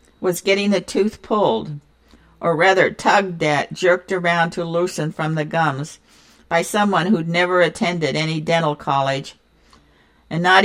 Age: 60-79